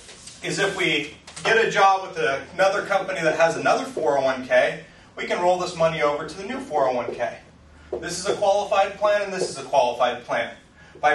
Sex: male